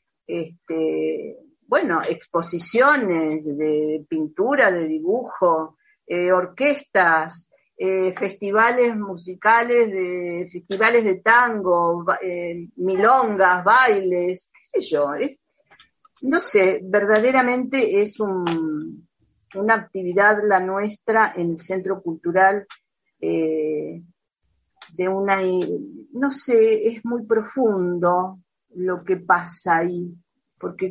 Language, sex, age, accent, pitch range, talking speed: Spanish, female, 40-59, Argentinian, 175-220 Hz, 95 wpm